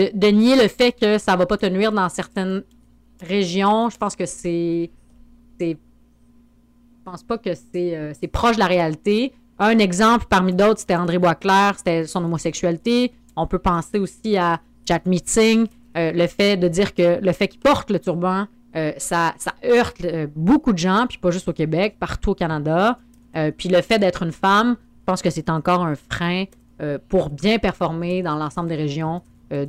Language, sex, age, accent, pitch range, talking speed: French, female, 30-49, Canadian, 170-210 Hz, 200 wpm